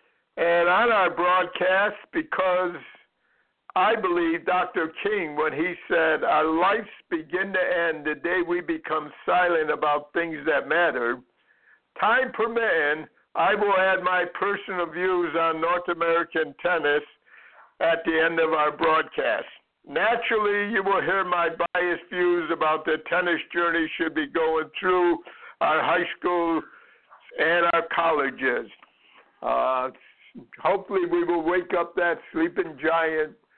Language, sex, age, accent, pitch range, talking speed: English, male, 60-79, American, 165-195 Hz, 130 wpm